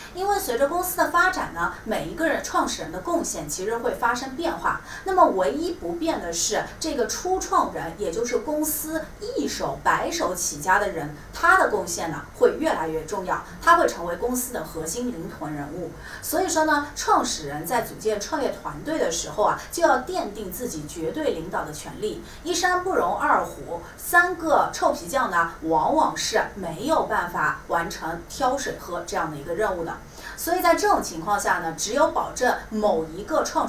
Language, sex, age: Chinese, female, 30-49